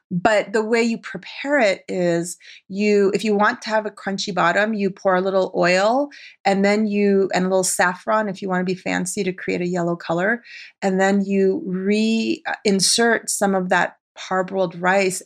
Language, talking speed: English, 190 wpm